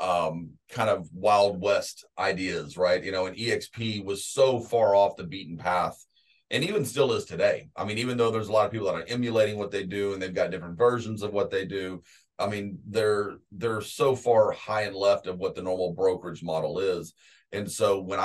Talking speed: 215 wpm